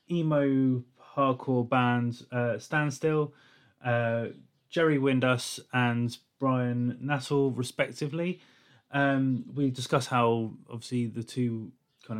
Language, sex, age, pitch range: English, male, 20-39, 115-130 Hz